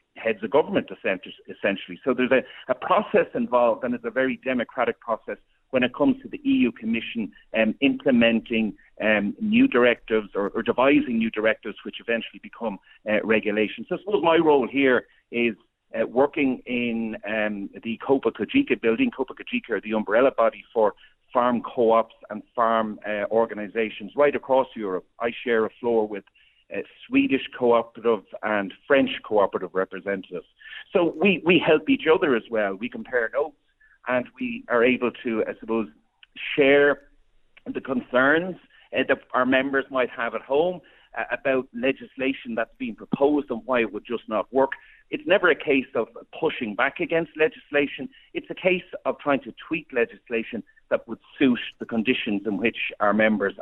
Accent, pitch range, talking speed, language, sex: Irish, 115-145 Hz, 165 wpm, English, male